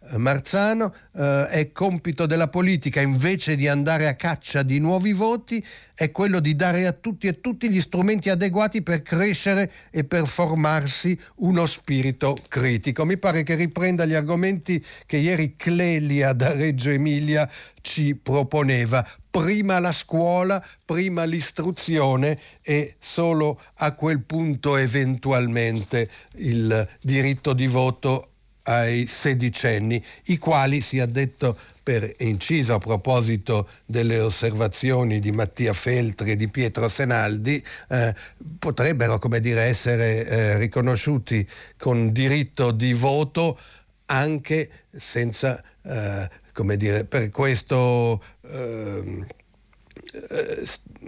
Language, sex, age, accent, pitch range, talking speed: Italian, male, 60-79, native, 120-165 Hz, 120 wpm